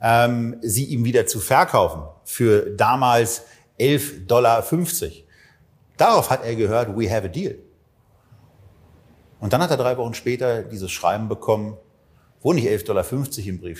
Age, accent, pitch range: 50-69, German, 100-120 Hz